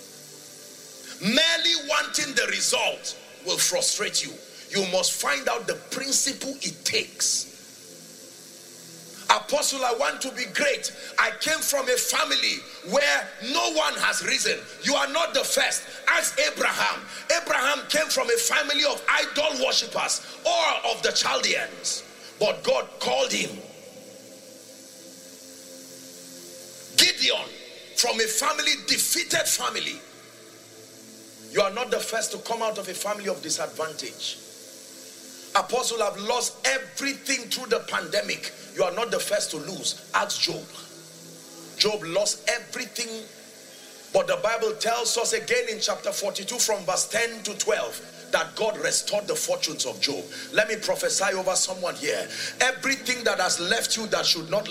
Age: 40-59